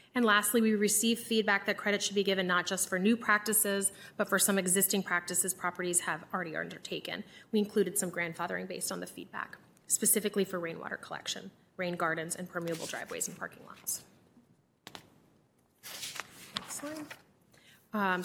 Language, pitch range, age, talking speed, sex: English, 175-205 Hz, 30-49, 150 wpm, female